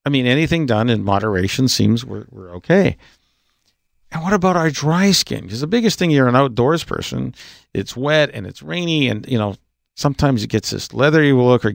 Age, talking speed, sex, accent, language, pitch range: 50-69, 200 wpm, male, American, English, 105-135 Hz